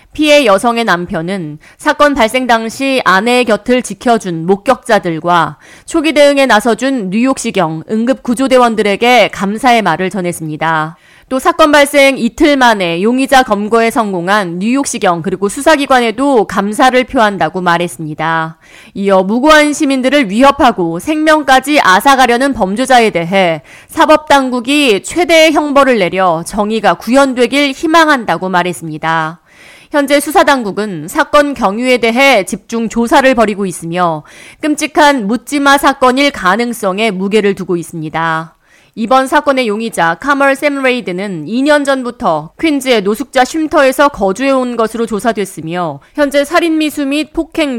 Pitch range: 185-275 Hz